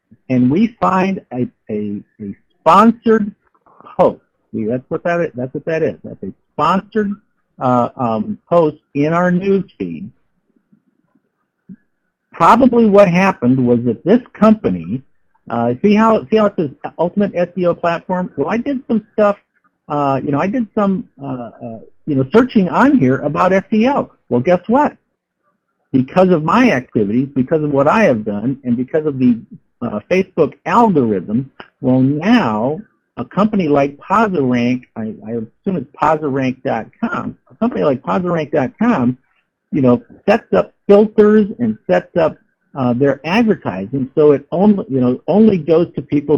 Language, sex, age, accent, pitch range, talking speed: English, male, 60-79, American, 130-205 Hz, 155 wpm